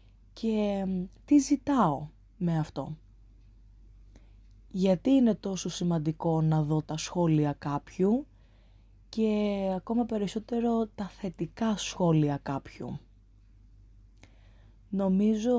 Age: 20-39